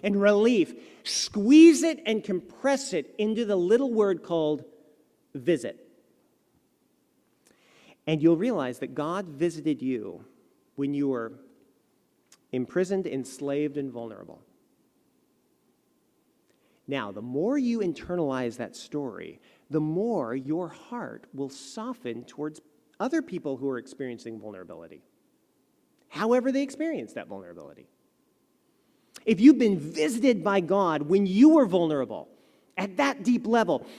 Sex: male